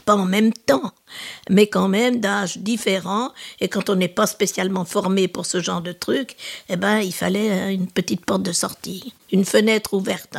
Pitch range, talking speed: 190-220 Hz, 190 wpm